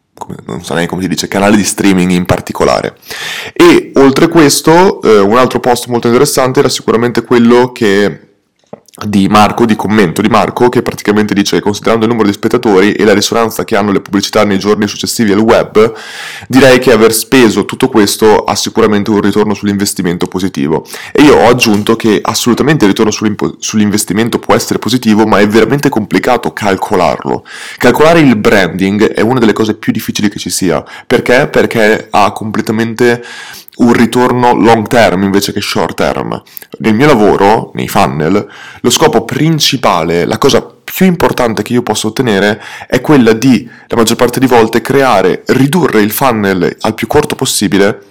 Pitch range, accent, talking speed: 105-130 Hz, native, 170 wpm